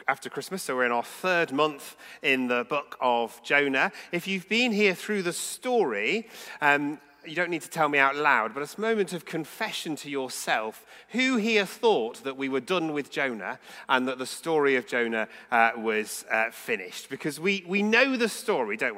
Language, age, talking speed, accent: English, 30-49, 200 wpm, British